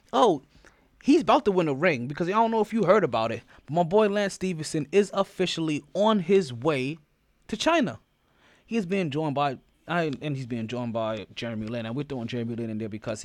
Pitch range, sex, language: 130-185 Hz, male, English